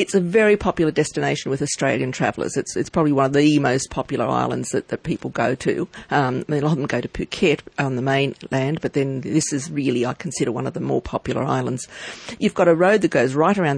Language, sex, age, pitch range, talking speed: English, female, 50-69, 135-170 Hz, 235 wpm